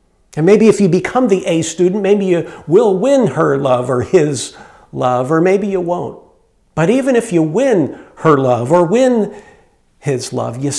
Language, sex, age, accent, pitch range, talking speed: English, male, 50-69, American, 155-210 Hz, 185 wpm